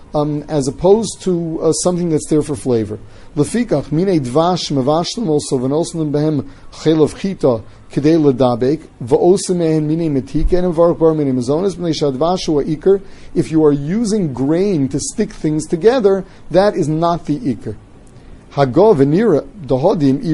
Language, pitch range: English, 140-175 Hz